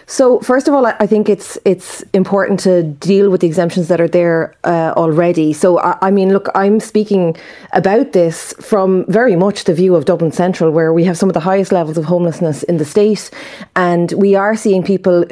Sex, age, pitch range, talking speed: female, 30-49, 165-190 Hz, 210 wpm